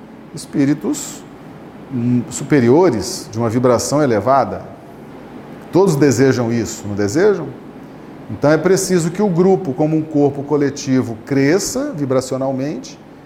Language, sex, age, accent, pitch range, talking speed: Portuguese, male, 40-59, Brazilian, 145-210 Hz, 105 wpm